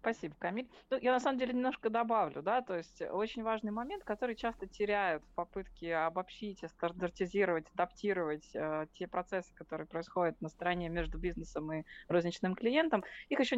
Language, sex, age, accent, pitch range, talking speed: Russian, female, 20-39, native, 175-225 Hz, 170 wpm